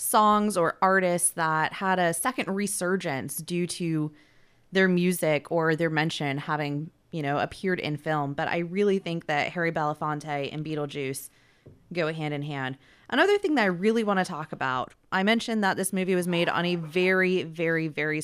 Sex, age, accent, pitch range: female, 20-39, American, 155-205 Hz